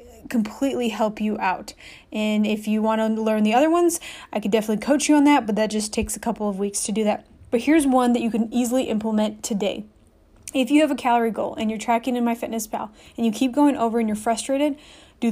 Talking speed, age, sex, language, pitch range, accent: 245 wpm, 20-39, female, English, 215-270 Hz, American